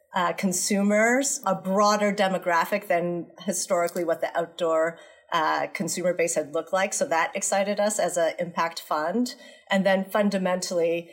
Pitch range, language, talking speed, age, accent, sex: 165-195 Hz, English, 145 wpm, 40-59, American, female